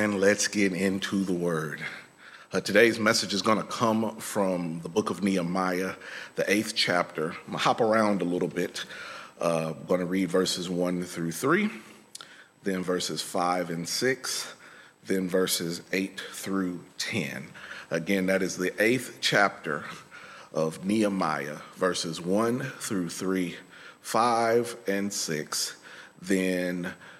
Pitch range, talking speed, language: 90-110 Hz, 135 wpm, English